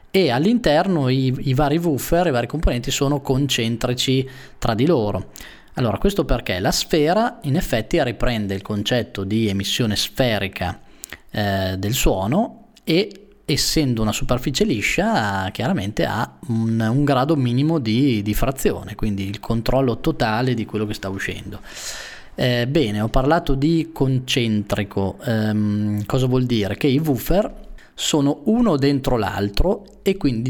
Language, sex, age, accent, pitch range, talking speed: Italian, male, 20-39, native, 105-150 Hz, 140 wpm